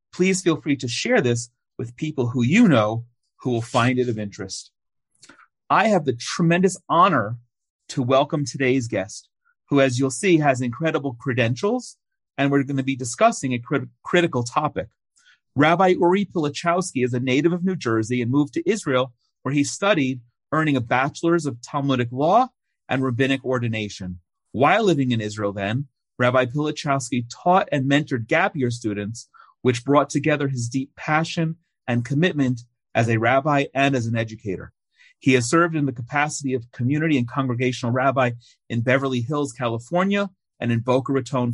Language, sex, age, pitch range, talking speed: English, male, 40-59, 120-155 Hz, 165 wpm